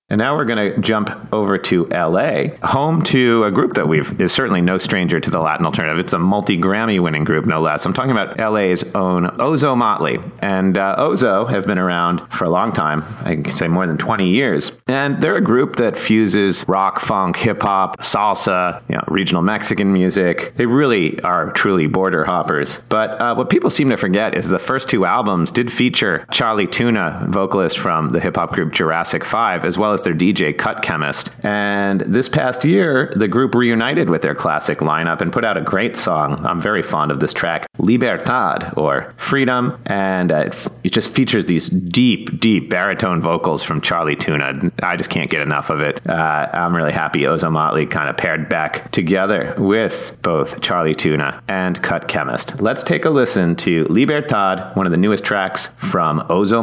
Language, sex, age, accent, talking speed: English, male, 30-49, American, 195 wpm